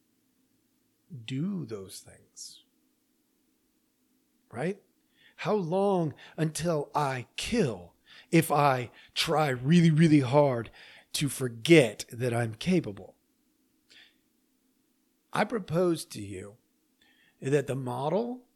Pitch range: 135-225 Hz